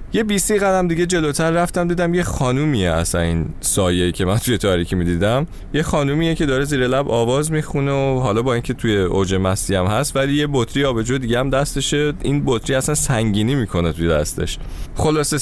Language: Persian